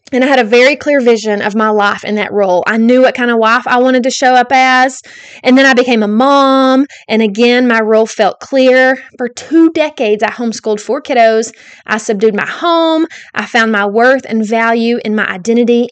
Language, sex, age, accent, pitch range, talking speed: English, female, 20-39, American, 220-270 Hz, 215 wpm